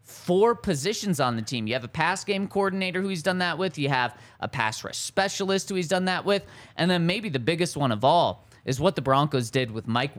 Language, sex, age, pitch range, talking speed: English, male, 20-39, 130-185 Hz, 245 wpm